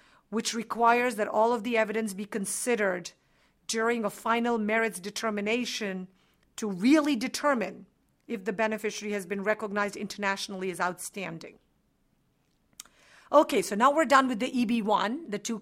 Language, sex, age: English, female, 50-69